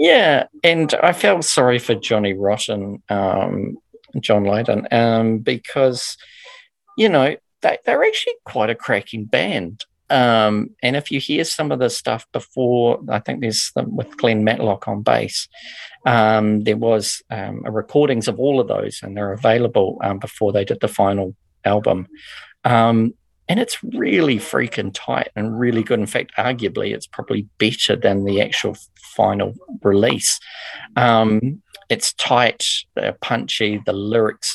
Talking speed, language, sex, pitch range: 155 wpm, English, male, 100-140 Hz